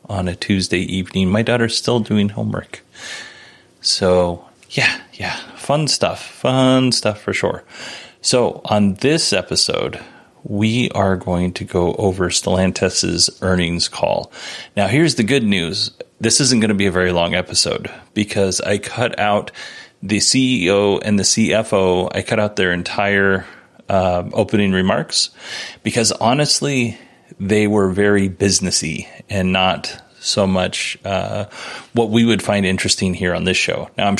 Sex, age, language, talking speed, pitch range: male, 30-49, English, 145 wpm, 95-115 Hz